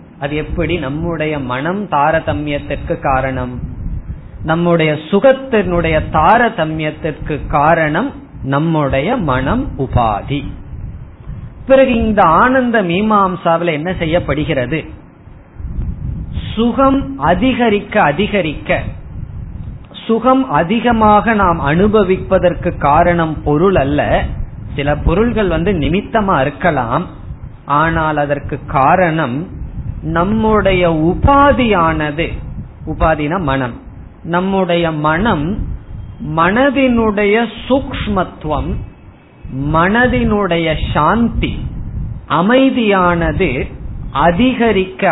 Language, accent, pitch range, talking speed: Tamil, native, 145-200 Hz, 60 wpm